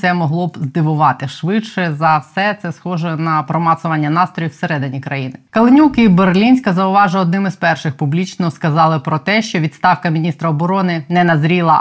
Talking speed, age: 160 wpm, 20-39